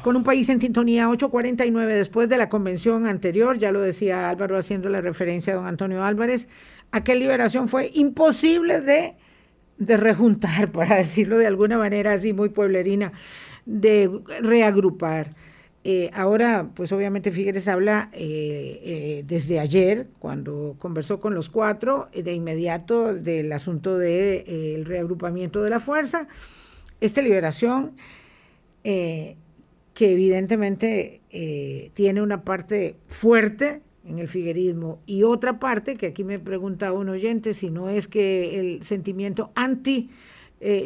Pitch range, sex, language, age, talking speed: 185-230 Hz, female, Spanish, 50-69, 140 wpm